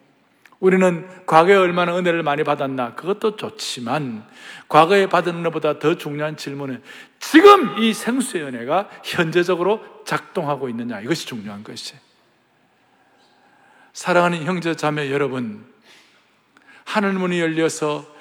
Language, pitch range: Korean, 155-225 Hz